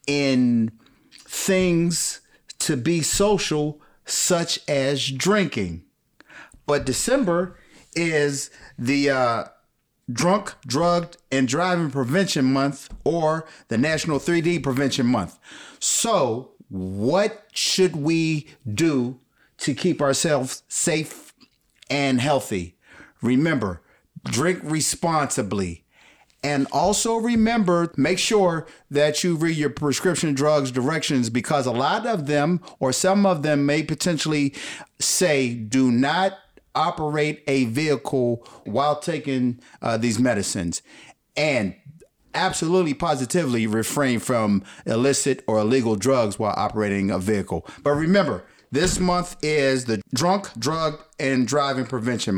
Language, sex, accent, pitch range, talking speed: English, male, American, 130-170 Hz, 110 wpm